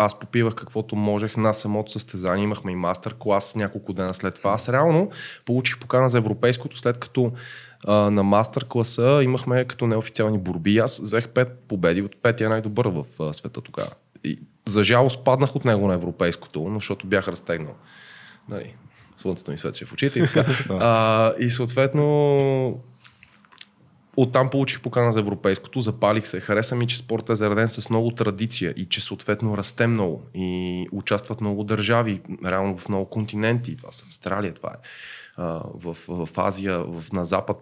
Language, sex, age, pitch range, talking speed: Bulgarian, male, 20-39, 100-120 Hz, 165 wpm